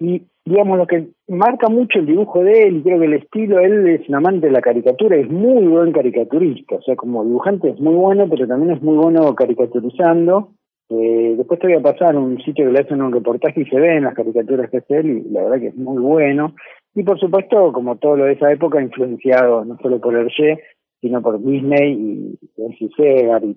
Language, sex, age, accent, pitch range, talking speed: Spanish, male, 40-59, Argentinian, 120-165 Hz, 225 wpm